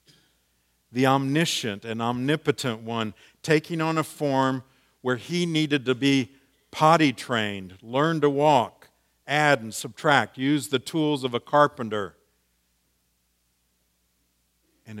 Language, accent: English, American